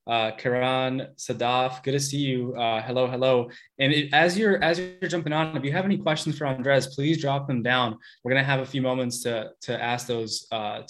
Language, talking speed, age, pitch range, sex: English, 225 wpm, 20-39, 130-160 Hz, male